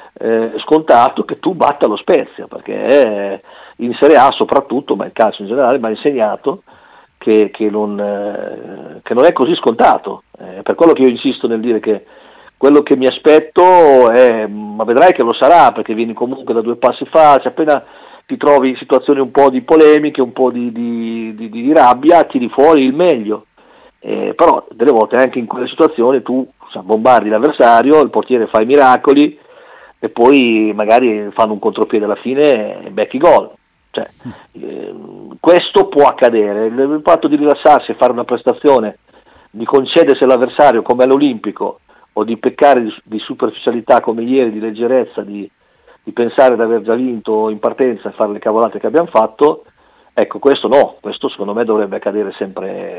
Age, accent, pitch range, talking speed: 50-69, native, 110-145 Hz, 180 wpm